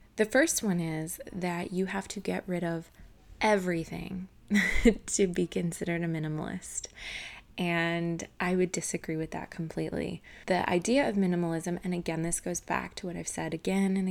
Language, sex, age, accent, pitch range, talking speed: English, female, 20-39, American, 165-195 Hz, 165 wpm